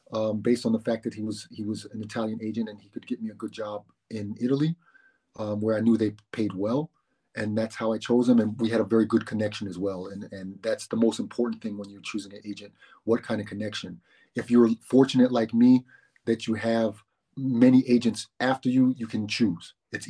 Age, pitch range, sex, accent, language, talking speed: 30-49, 105-125 Hz, male, American, English, 230 wpm